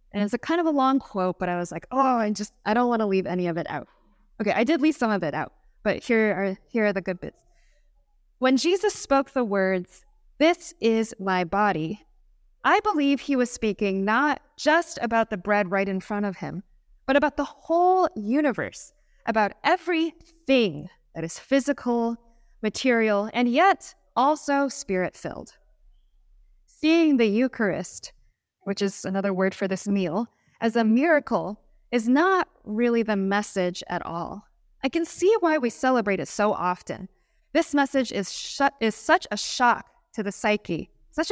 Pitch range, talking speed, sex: 200-280 Hz, 175 wpm, female